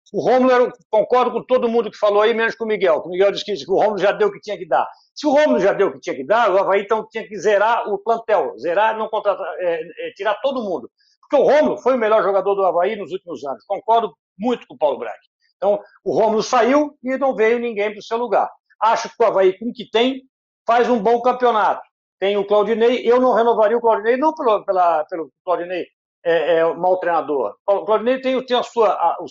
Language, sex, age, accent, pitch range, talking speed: Portuguese, male, 60-79, Brazilian, 195-245 Hz, 240 wpm